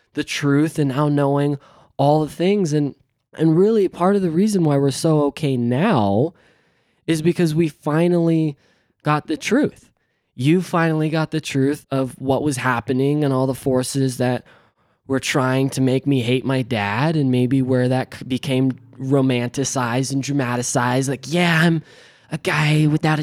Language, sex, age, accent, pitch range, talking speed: English, male, 20-39, American, 130-160 Hz, 165 wpm